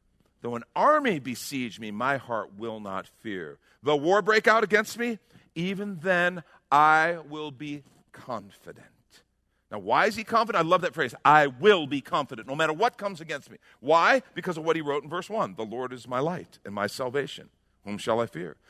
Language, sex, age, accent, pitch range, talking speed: English, male, 50-69, American, 135-210 Hz, 200 wpm